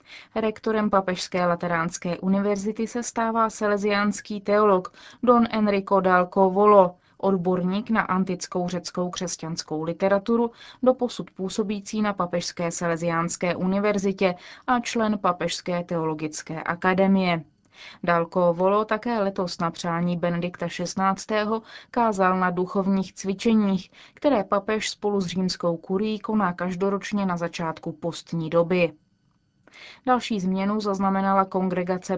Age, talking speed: 20-39, 105 wpm